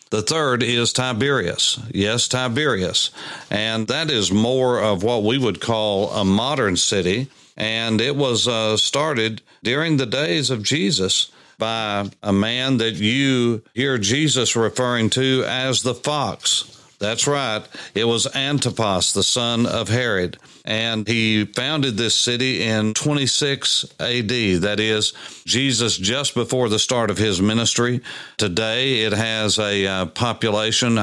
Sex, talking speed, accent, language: male, 140 wpm, American, English